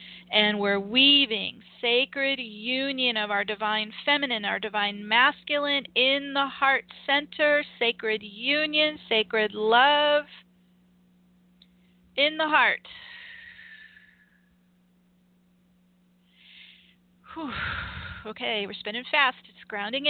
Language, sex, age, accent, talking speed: English, female, 40-59, American, 85 wpm